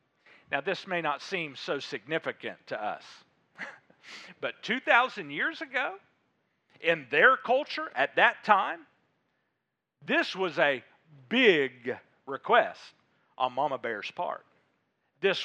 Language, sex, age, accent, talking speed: English, male, 50-69, American, 115 wpm